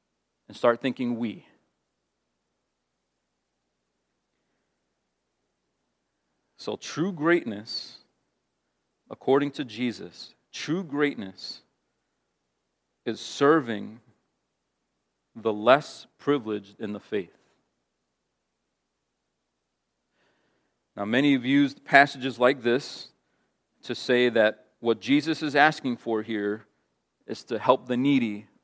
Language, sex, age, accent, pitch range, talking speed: English, male, 40-59, American, 115-155 Hz, 85 wpm